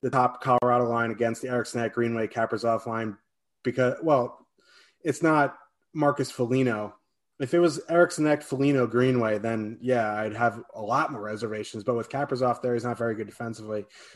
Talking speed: 175 wpm